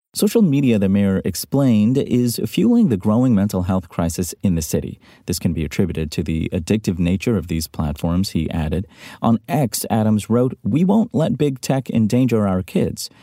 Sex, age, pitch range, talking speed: male, 30-49, 85-120 Hz, 180 wpm